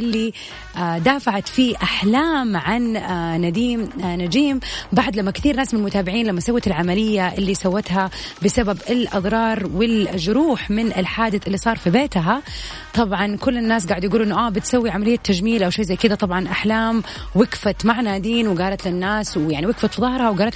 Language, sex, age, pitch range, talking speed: Arabic, female, 30-49, 185-230 Hz, 150 wpm